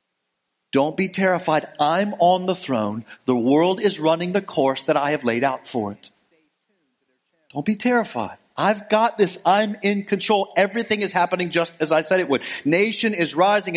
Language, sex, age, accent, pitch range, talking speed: English, male, 40-59, American, 155-210 Hz, 180 wpm